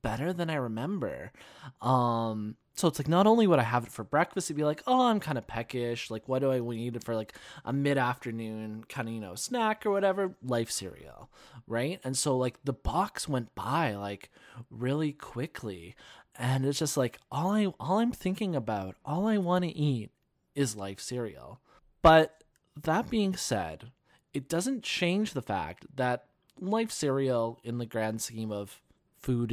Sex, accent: male, American